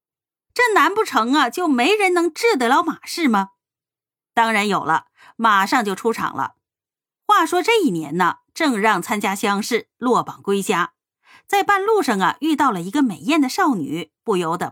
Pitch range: 195-320 Hz